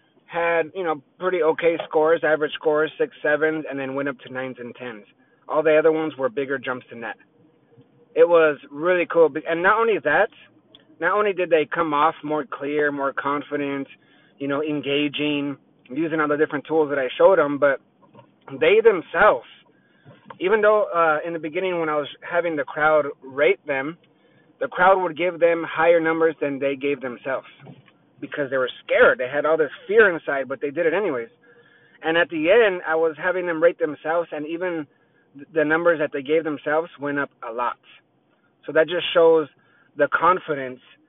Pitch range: 145-180 Hz